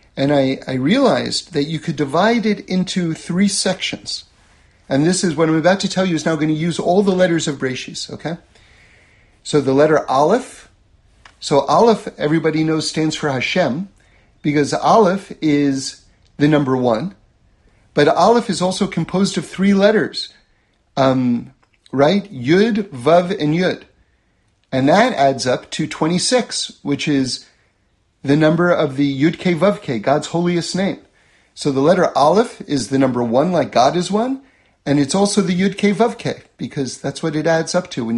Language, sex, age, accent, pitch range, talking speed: English, male, 40-59, American, 125-185 Hz, 165 wpm